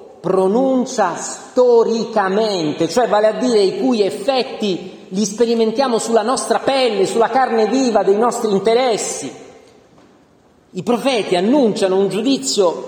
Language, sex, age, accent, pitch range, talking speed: Italian, male, 40-59, native, 210-275 Hz, 115 wpm